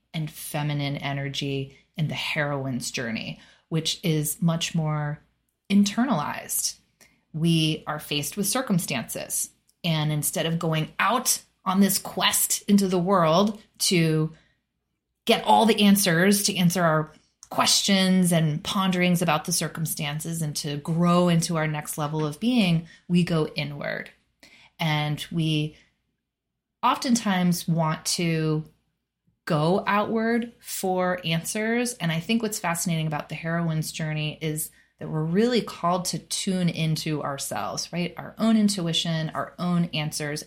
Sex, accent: female, American